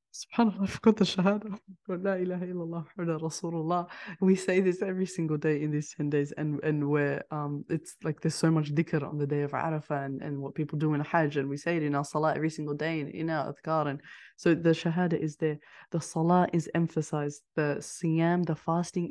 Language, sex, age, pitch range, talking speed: English, female, 20-39, 155-185 Hz, 205 wpm